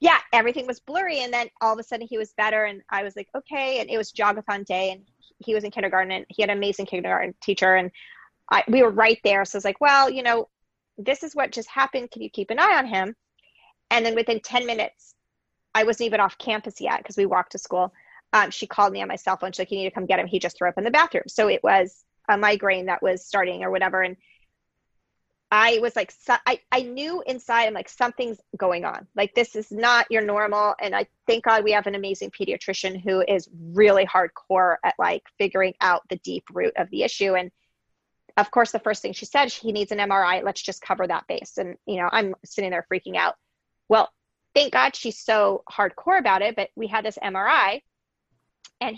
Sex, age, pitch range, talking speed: female, 20-39, 195-240 Hz, 230 wpm